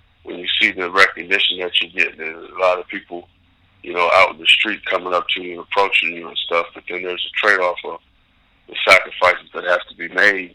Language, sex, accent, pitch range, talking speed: English, male, American, 90-95 Hz, 240 wpm